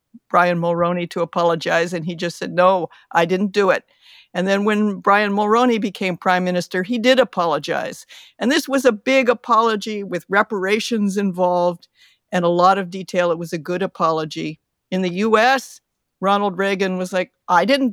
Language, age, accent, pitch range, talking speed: English, 50-69, American, 175-210 Hz, 175 wpm